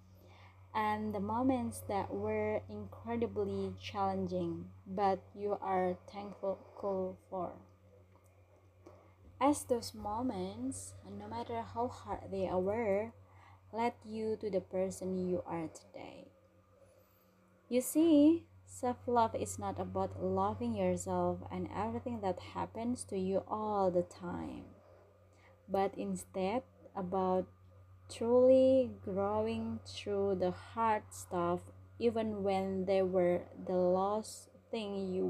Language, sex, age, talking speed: English, female, 20-39, 110 wpm